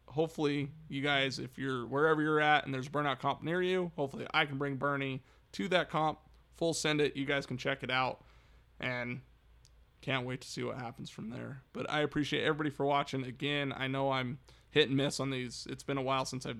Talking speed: 220 wpm